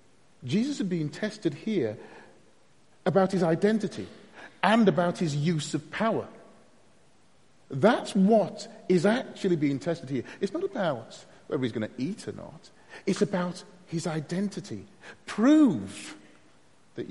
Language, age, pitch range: English, 30-49, 140-215 Hz